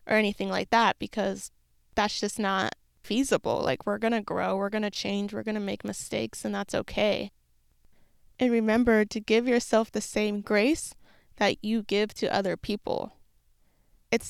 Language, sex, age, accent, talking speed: English, female, 20-39, American, 170 wpm